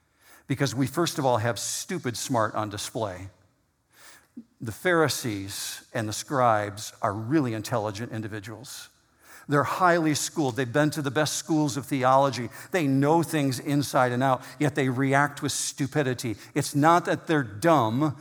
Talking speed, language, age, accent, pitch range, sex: 150 wpm, English, 50-69, American, 120-160 Hz, male